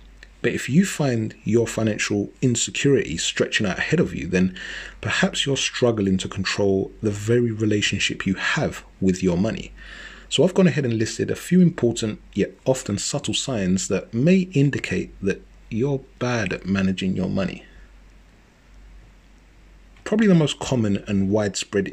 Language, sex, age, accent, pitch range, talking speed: English, male, 30-49, British, 100-130 Hz, 150 wpm